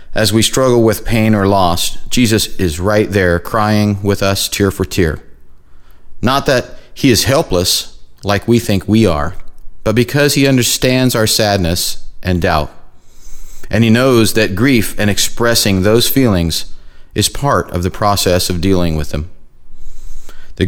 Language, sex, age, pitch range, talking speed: English, male, 40-59, 90-120 Hz, 155 wpm